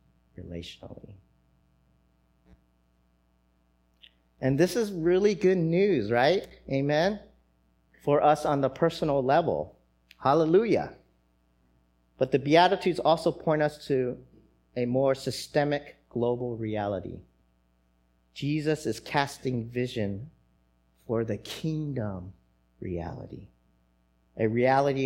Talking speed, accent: 90 wpm, American